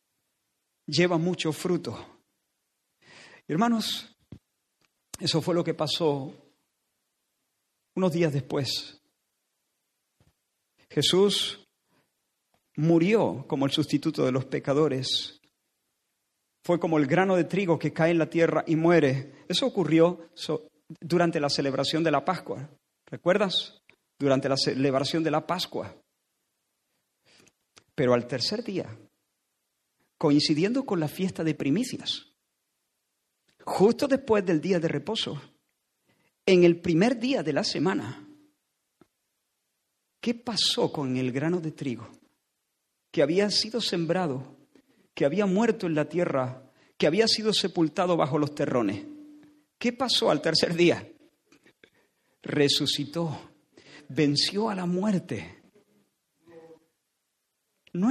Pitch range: 145-190 Hz